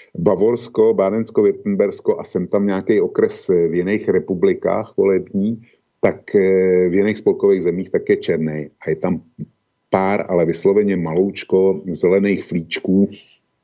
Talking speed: 130 wpm